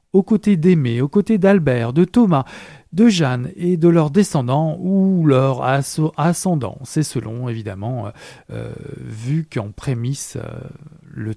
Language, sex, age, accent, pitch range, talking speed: French, male, 40-59, French, 125-185 Hz, 140 wpm